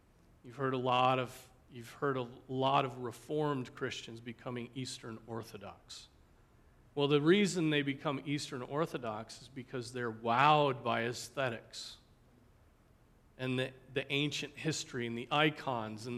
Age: 40-59